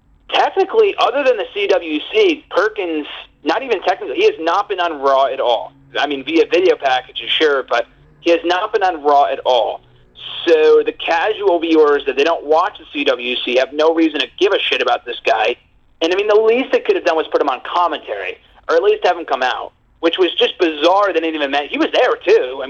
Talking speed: 225 wpm